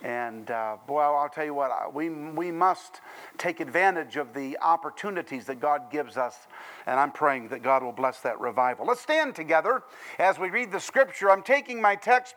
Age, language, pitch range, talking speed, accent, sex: 50-69, English, 175-270 Hz, 195 wpm, American, male